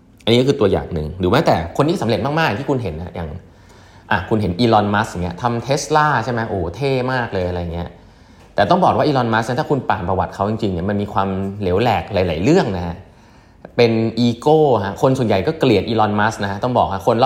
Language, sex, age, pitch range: Thai, male, 20-39, 95-125 Hz